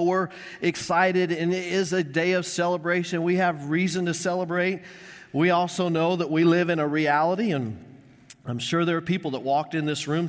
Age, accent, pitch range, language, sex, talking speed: 40-59, American, 135-180 Hz, English, male, 200 wpm